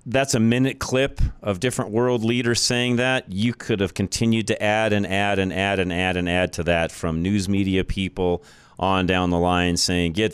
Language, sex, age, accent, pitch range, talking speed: English, male, 40-59, American, 95-120 Hz, 210 wpm